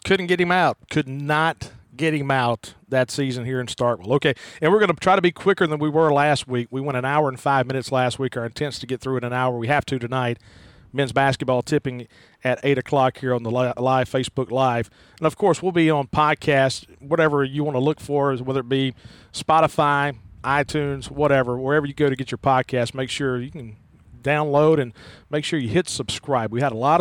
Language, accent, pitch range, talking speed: English, American, 130-160 Hz, 225 wpm